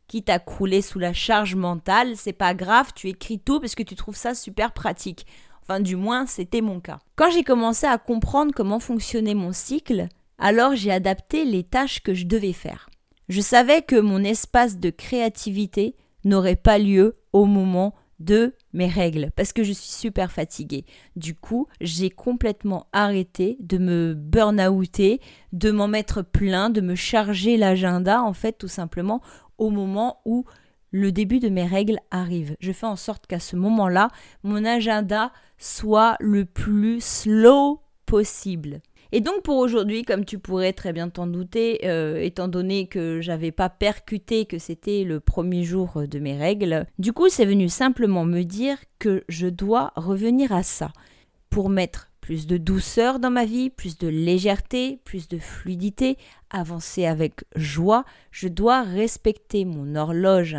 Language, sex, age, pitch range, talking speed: French, female, 30-49, 180-225 Hz, 170 wpm